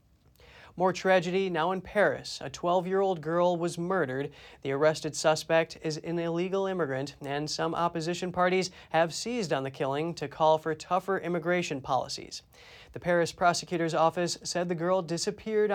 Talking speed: 150 wpm